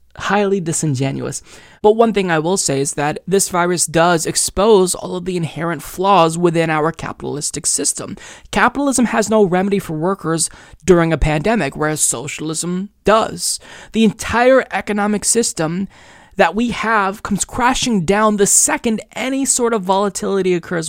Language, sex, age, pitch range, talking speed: English, male, 20-39, 175-220 Hz, 150 wpm